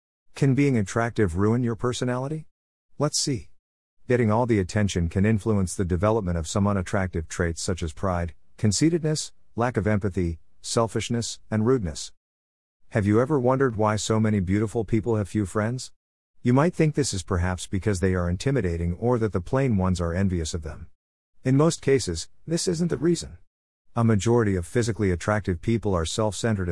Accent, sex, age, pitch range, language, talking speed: American, male, 50-69, 90-120 Hz, English, 170 wpm